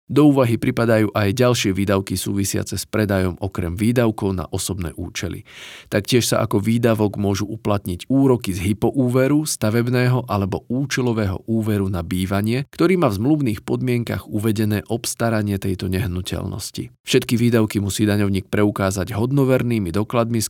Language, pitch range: Slovak, 100-120 Hz